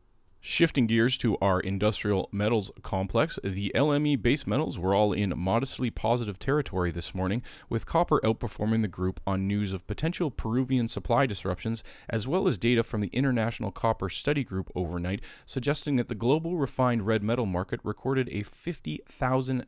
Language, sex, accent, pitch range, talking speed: English, male, American, 95-130 Hz, 160 wpm